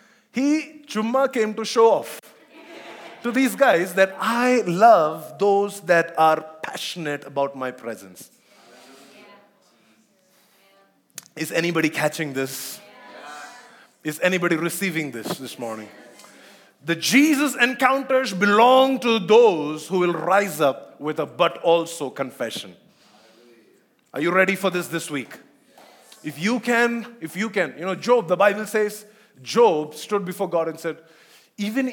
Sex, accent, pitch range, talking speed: male, Indian, 155-225 Hz, 130 wpm